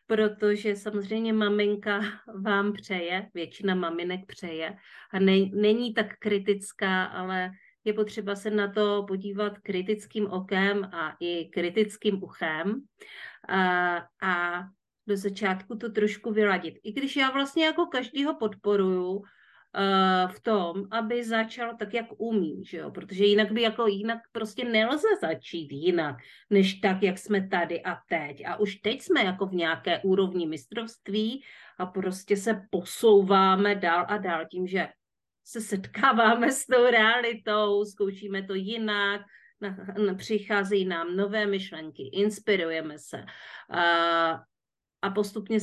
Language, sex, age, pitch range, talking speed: Czech, female, 40-59, 185-215 Hz, 135 wpm